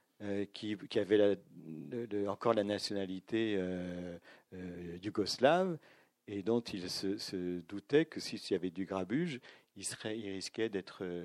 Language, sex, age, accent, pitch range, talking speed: French, male, 50-69, French, 90-120 Hz, 165 wpm